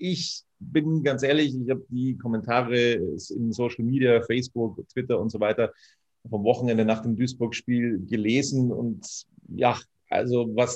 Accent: German